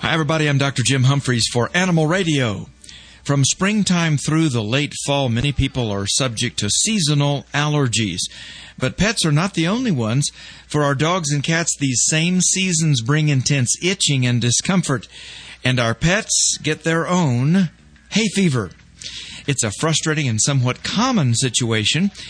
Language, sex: English, male